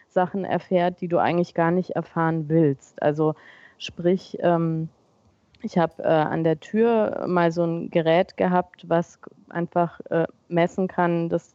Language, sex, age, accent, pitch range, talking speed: German, female, 30-49, German, 165-185 Hz, 135 wpm